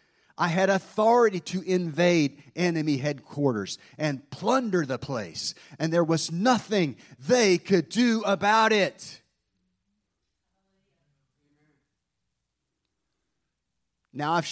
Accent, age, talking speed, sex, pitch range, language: American, 40-59, 90 wpm, male, 130-165 Hz, English